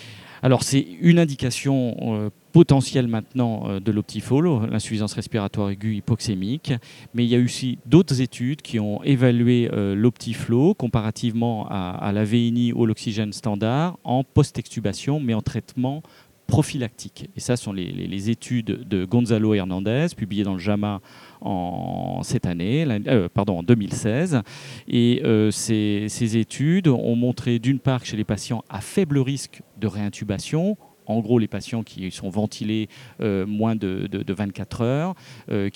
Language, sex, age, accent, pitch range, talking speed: French, male, 40-59, French, 105-130 Hz, 150 wpm